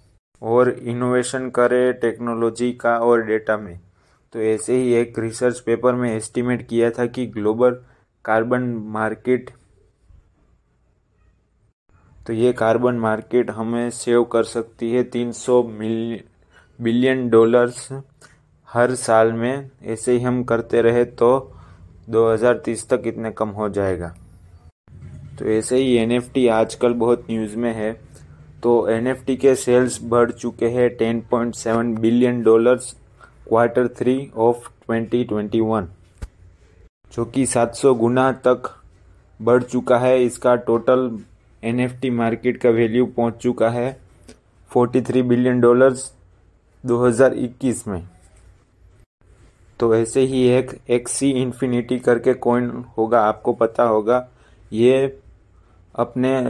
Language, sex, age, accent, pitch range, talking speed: Hindi, male, 20-39, native, 110-125 Hz, 120 wpm